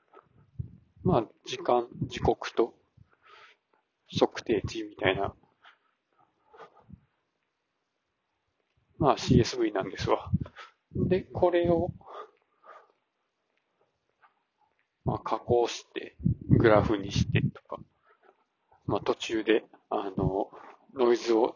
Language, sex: Japanese, male